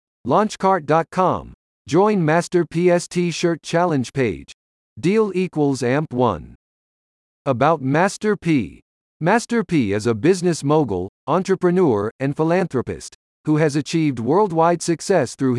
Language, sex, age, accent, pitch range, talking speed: English, male, 50-69, American, 125-180 Hz, 110 wpm